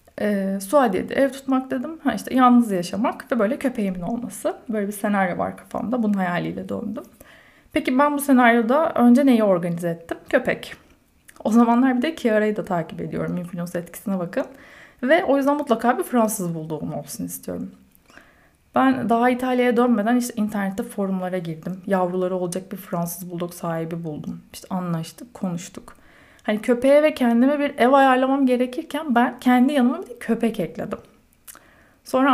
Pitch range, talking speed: 195-270 Hz, 155 wpm